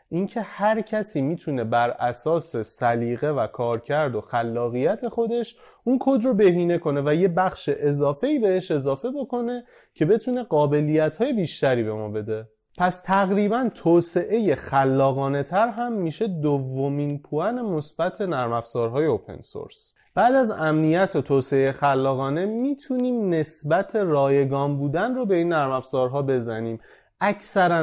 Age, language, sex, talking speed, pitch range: 30-49, Persian, male, 130 wpm, 135-205 Hz